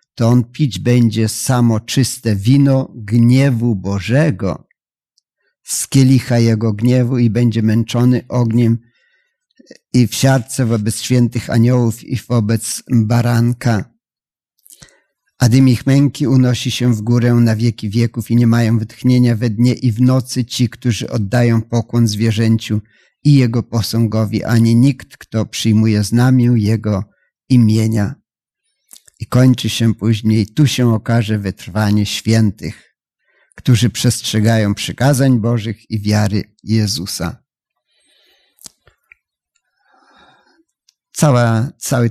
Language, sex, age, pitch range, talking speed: Polish, male, 50-69, 110-125 Hz, 110 wpm